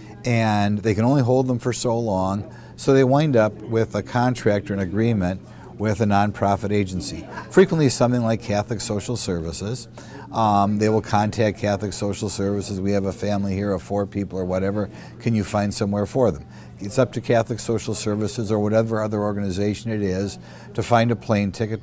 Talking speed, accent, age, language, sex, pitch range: 190 wpm, American, 50-69, English, male, 100-120 Hz